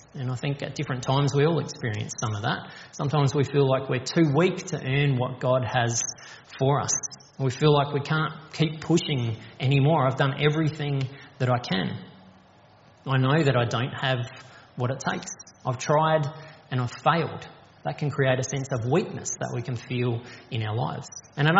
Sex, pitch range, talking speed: male, 130-155 Hz, 195 wpm